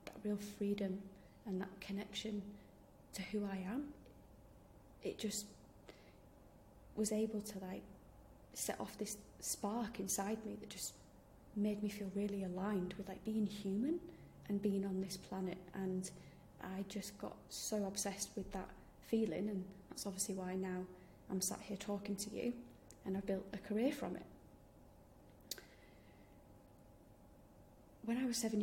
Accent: British